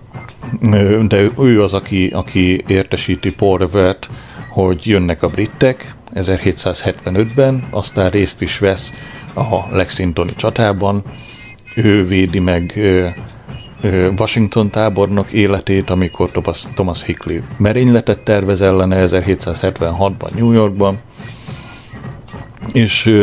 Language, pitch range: Hungarian, 95-110 Hz